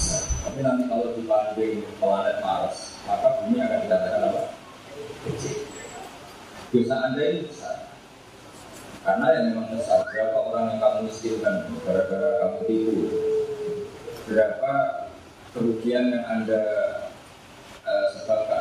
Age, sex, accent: 30-49, male, native